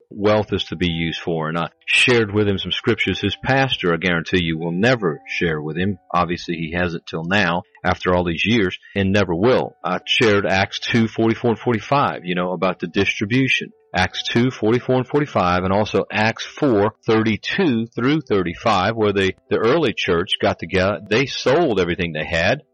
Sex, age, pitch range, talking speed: male, 40-59, 90-115 Hz, 185 wpm